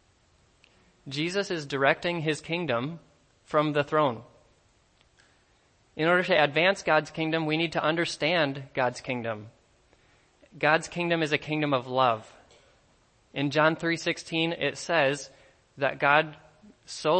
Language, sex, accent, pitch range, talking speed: English, male, American, 130-155 Hz, 120 wpm